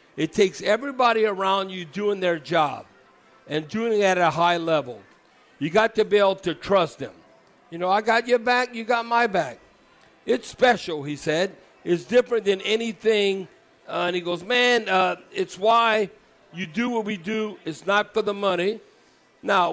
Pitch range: 175-220 Hz